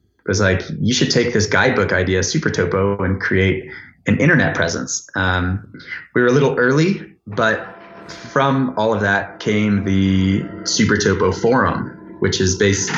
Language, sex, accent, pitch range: English, male, American, 95-105 Hz